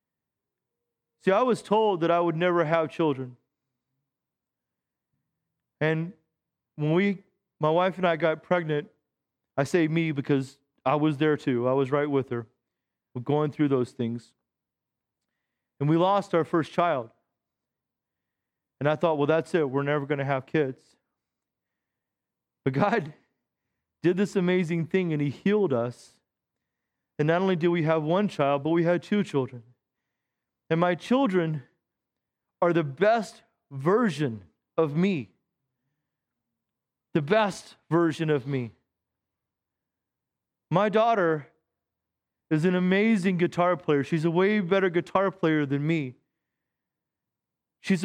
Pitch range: 140-190 Hz